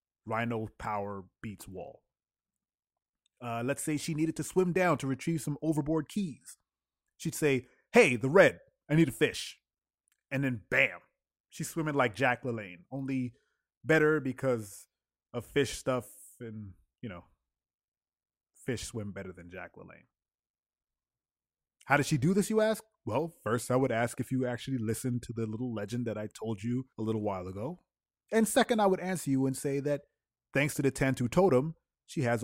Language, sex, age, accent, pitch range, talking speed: English, male, 30-49, American, 105-135 Hz, 170 wpm